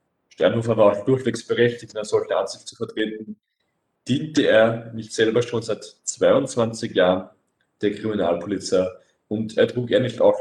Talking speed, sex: 155 wpm, male